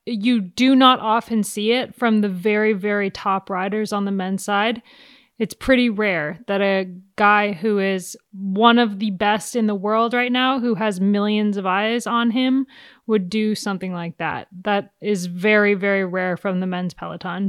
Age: 20-39